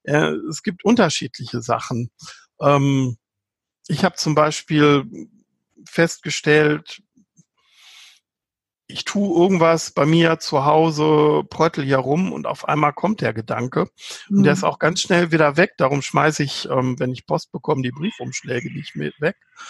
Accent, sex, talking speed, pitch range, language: German, male, 135 wpm, 135-170 Hz, German